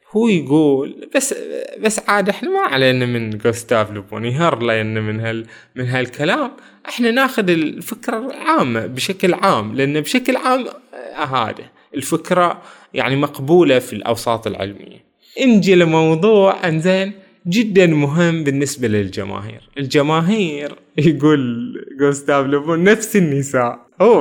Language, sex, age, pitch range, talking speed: Arabic, male, 20-39, 130-195 Hz, 120 wpm